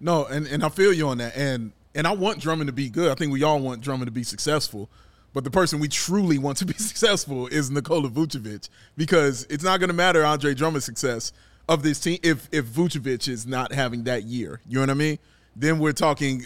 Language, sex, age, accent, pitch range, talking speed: English, male, 30-49, American, 135-170 Hz, 235 wpm